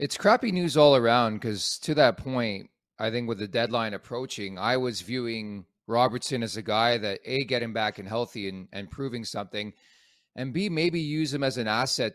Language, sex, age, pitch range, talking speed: English, male, 30-49, 105-125 Hz, 200 wpm